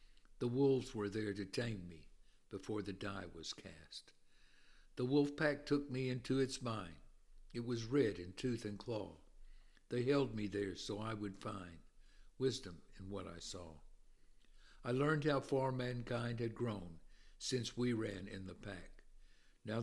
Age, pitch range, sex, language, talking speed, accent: 60-79, 100-130 Hz, male, English, 165 wpm, American